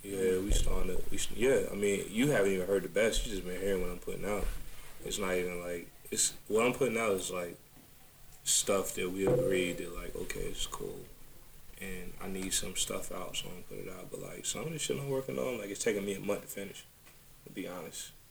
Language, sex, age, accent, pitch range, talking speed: English, male, 20-39, American, 90-100 Hz, 240 wpm